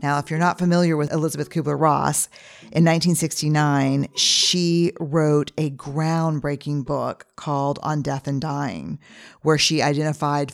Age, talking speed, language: 40-59, 130 wpm, English